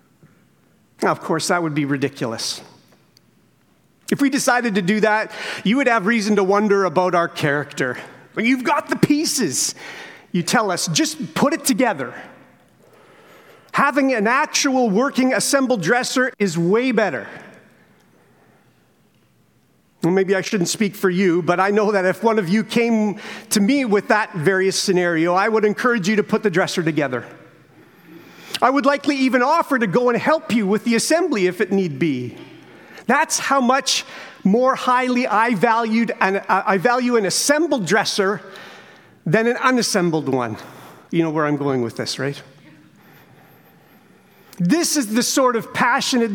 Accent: American